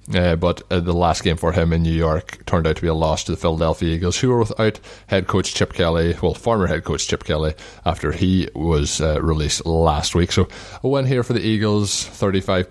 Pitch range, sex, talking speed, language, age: 80-95 Hz, male, 230 wpm, English, 20-39